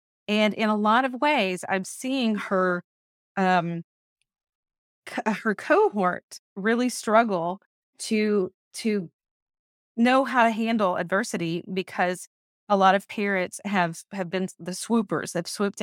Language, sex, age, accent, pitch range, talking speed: English, female, 30-49, American, 180-225 Hz, 130 wpm